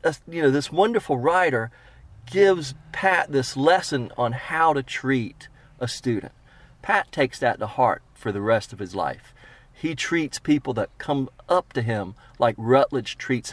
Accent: American